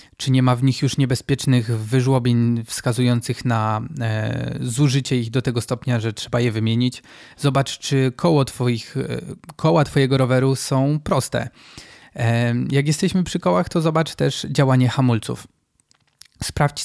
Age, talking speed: 20-39, 130 wpm